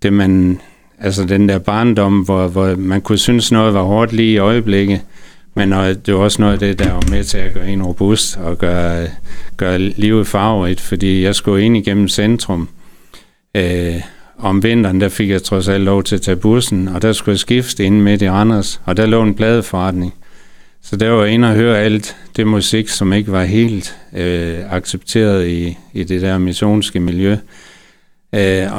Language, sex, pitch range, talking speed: Danish, male, 95-105 Hz, 190 wpm